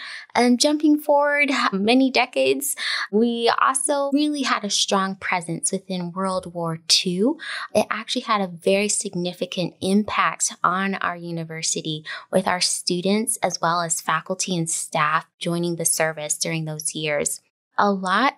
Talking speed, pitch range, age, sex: 140 wpm, 175-220 Hz, 20-39, female